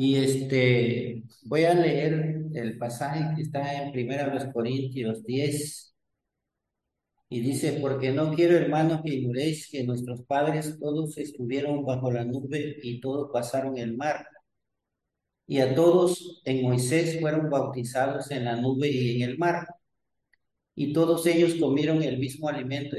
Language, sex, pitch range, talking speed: English, male, 125-155 Hz, 145 wpm